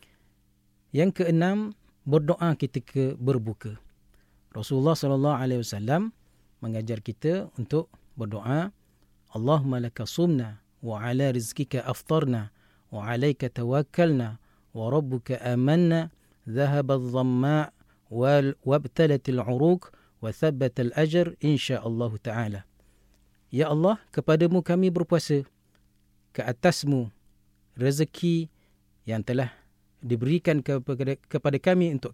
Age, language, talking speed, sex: 40-59, Malay, 95 wpm, male